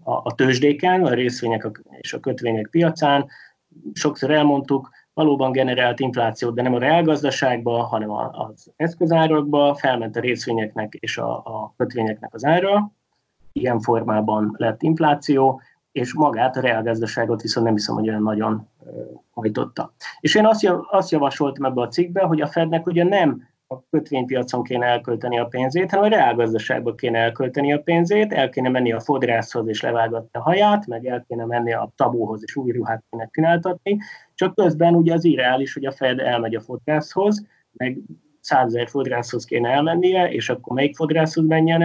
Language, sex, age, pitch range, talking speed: Hungarian, male, 30-49, 120-160 Hz, 155 wpm